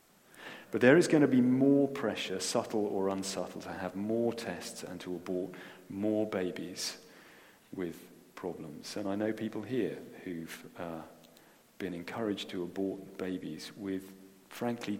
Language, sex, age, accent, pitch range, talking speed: English, male, 40-59, British, 95-130 Hz, 145 wpm